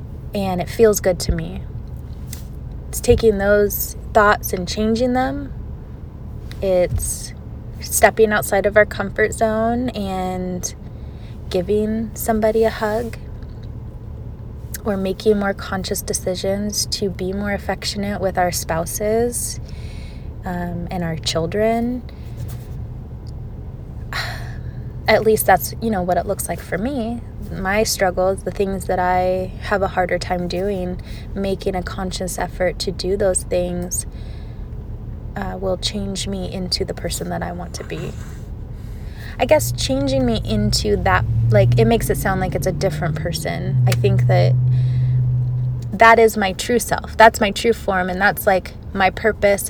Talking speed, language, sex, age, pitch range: 140 wpm, English, female, 20-39, 165-210 Hz